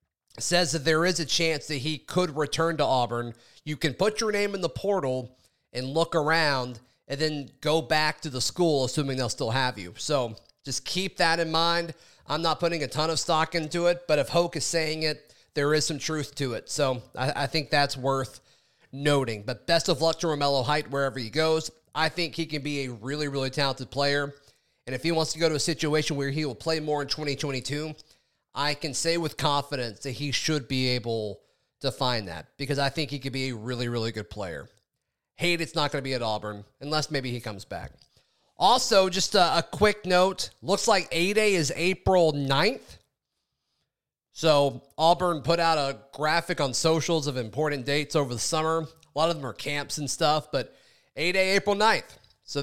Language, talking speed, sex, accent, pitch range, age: English, 205 wpm, male, American, 135-165 Hz, 30-49